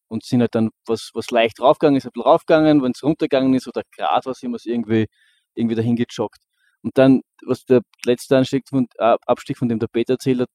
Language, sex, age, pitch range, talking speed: German, male, 20-39, 120-135 Hz, 220 wpm